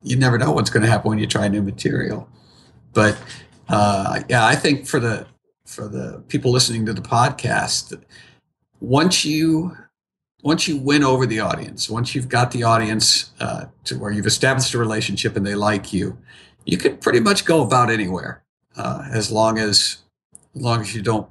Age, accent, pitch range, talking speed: 50-69, American, 105-130 Hz, 185 wpm